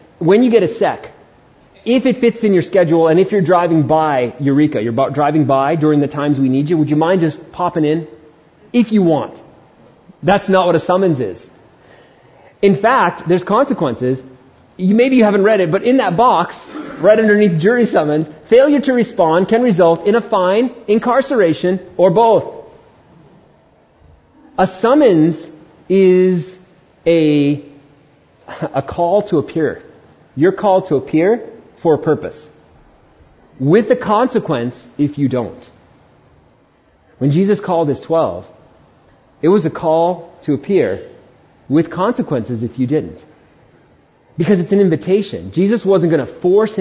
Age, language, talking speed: 30-49, English, 150 wpm